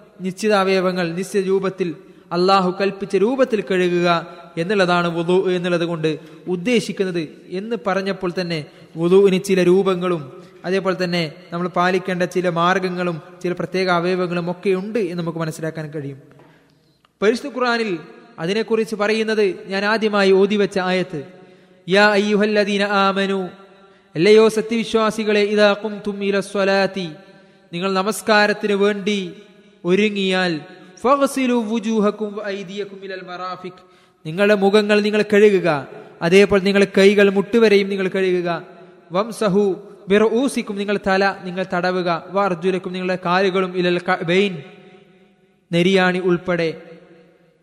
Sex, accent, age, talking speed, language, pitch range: male, native, 20-39, 95 wpm, Malayalam, 180-210 Hz